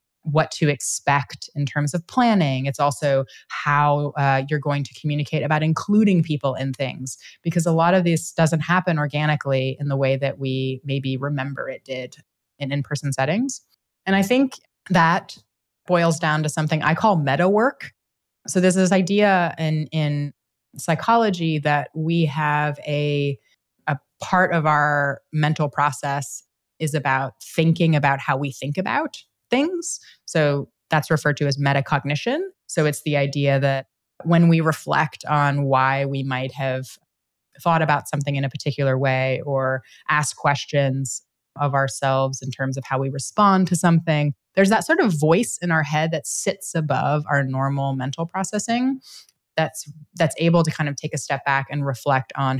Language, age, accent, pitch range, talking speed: English, 20-39, American, 140-165 Hz, 165 wpm